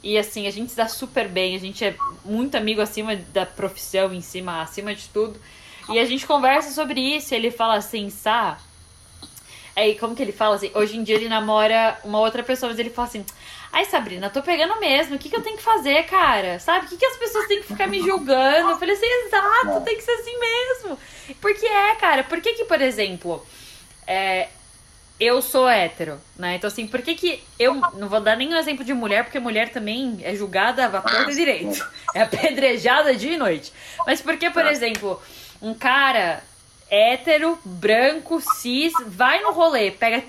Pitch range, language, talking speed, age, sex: 215-330 Hz, Portuguese, 205 wpm, 10-29, female